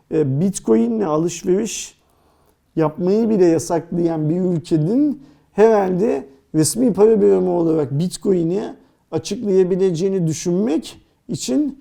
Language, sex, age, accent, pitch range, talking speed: Turkish, male, 50-69, native, 160-210 Hz, 80 wpm